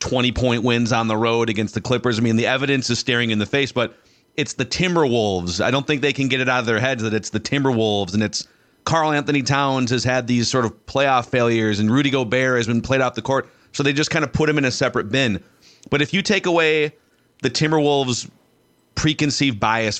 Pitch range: 110-140 Hz